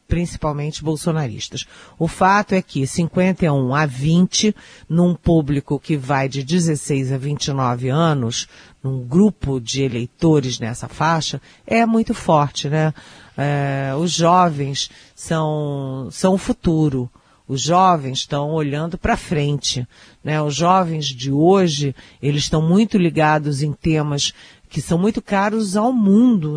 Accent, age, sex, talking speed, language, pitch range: Brazilian, 50-69, female, 125 wpm, Portuguese, 140-175 Hz